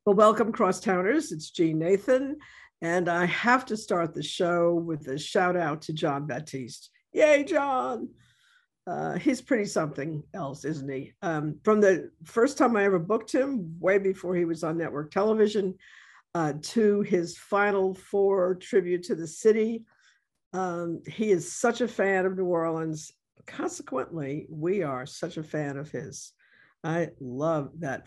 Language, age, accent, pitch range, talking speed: English, 60-79, American, 160-215 Hz, 160 wpm